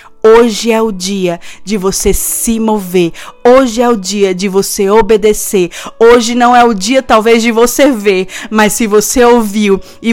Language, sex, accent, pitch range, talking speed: Portuguese, female, Brazilian, 200-250 Hz, 170 wpm